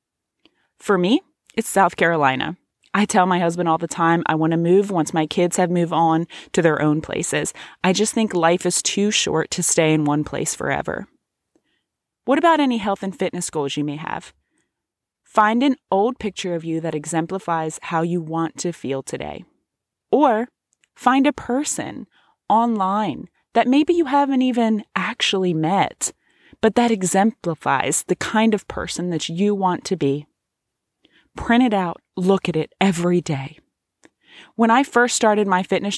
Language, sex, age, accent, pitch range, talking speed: English, female, 20-39, American, 160-210 Hz, 170 wpm